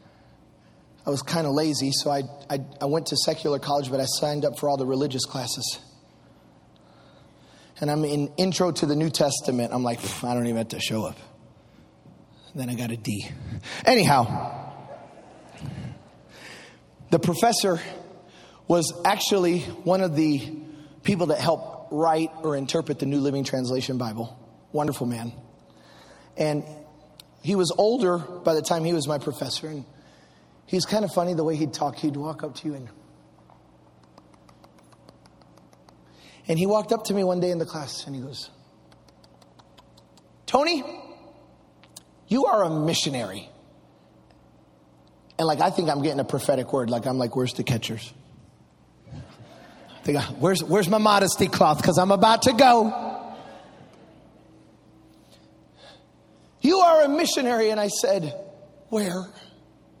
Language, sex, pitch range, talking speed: English, male, 120-175 Hz, 145 wpm